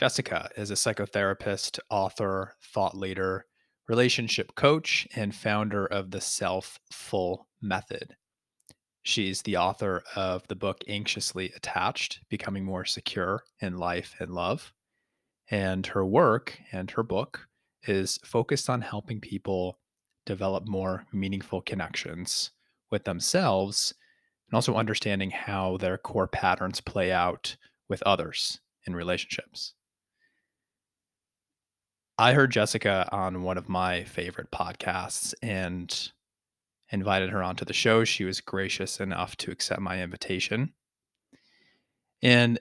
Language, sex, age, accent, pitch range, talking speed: English, male, 30-49, American, 95-110 Hz, 120 wpm